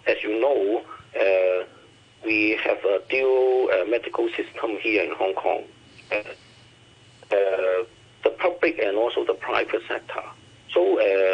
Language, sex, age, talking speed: English, male, 50-69, 130 wpm